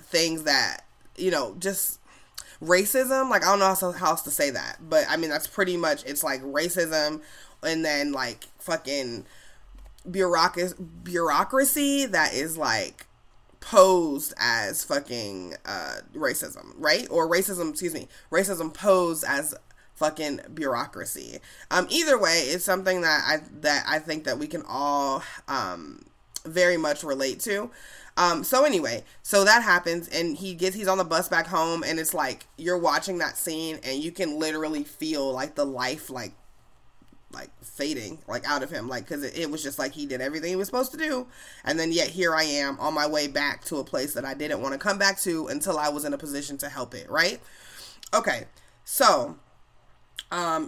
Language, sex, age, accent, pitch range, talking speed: English, female, 20-39, American, 150-190 Hz, 180 wpm